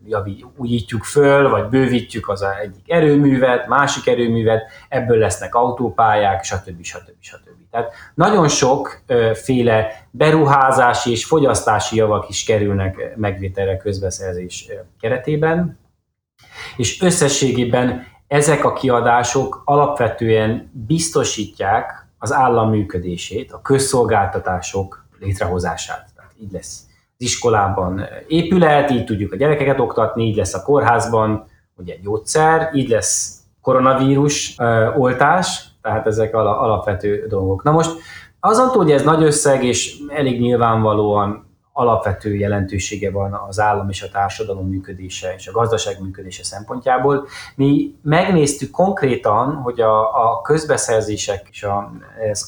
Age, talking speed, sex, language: 30-49, 115 wpm, male, Hungarian